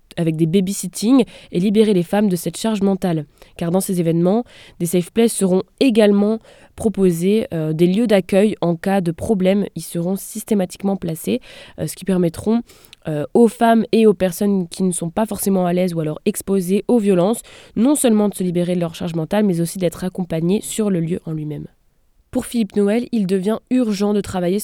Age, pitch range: 20-39, 175-220 Hz